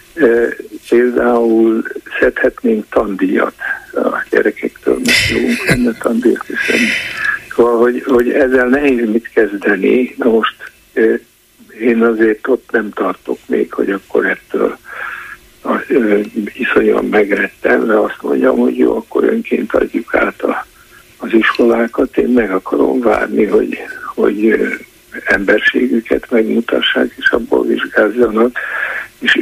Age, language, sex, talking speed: 60-79, Hungarian, male, 105 wpm